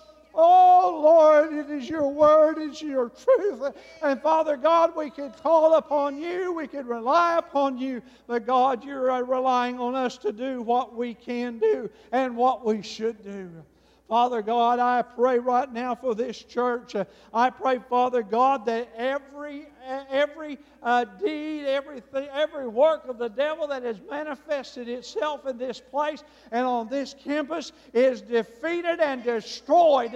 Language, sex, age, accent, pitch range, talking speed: English, male, 50-69, American, 245-300 Hz, 155 wpm